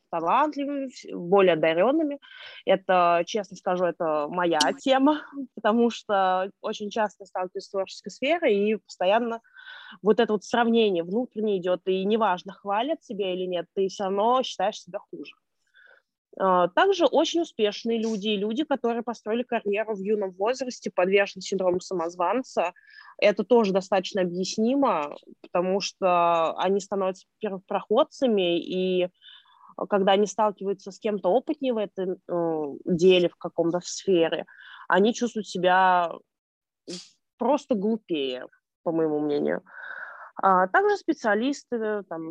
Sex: female